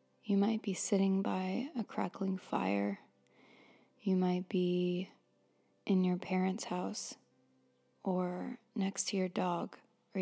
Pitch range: 190-215 Hz